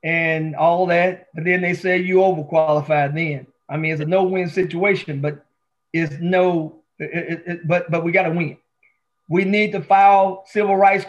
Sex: male